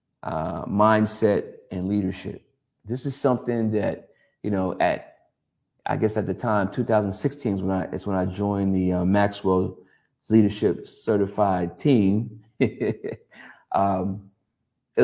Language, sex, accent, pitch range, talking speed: English, male, American, 100-120 Hz, 130 wpm